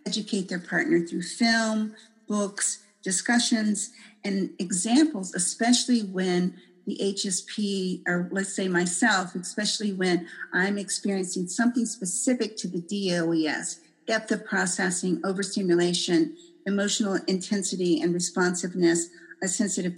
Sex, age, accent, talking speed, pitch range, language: female, 50-69, American, 110 wpm, 185-230 Hz, English